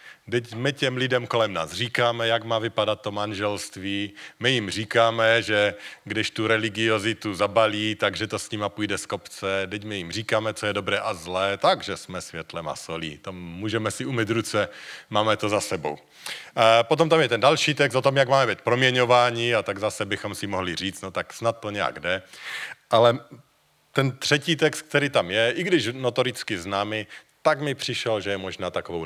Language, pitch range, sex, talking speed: Czech, 95-120 Hz, male, 190 wpm